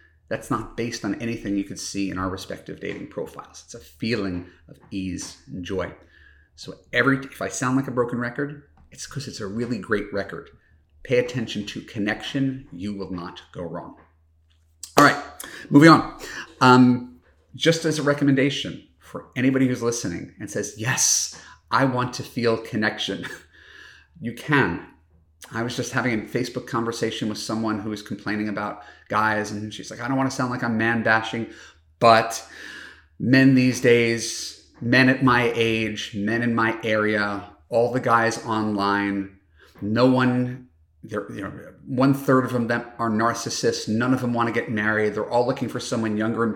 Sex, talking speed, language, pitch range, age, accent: male, 175 wpm, English, 100-125 Hz, 40-59, American